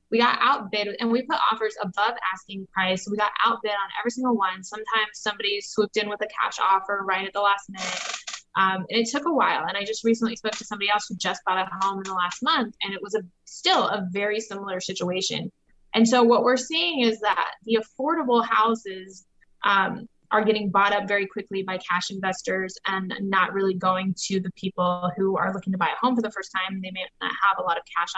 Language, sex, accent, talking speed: English, female, American, 230 wpm